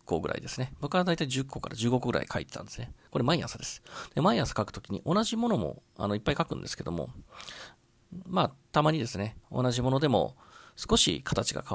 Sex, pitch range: male, 110-155 Hz